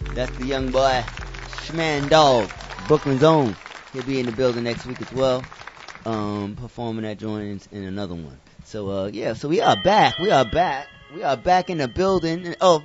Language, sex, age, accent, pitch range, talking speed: English, male, 20-39, American, 110-145 Hz, 195 wpm